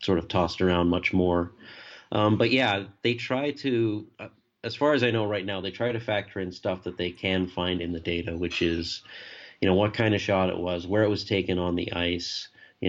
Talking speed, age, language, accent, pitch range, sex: 235 wpm, 30-49, English, American, 90-105 Hz, male